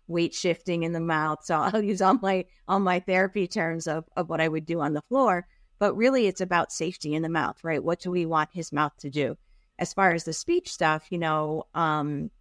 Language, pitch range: English, 155-195 Hz